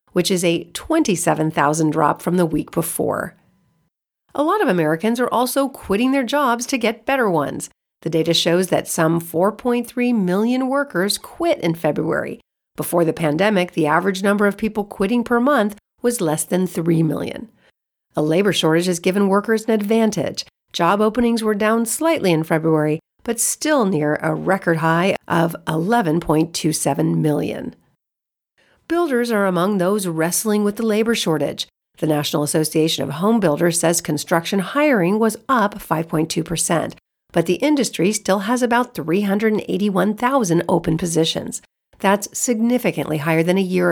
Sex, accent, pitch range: female, American, 160-225 Hz